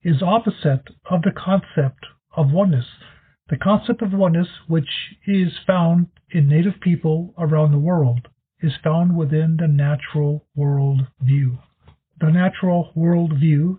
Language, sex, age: English, male, 50-69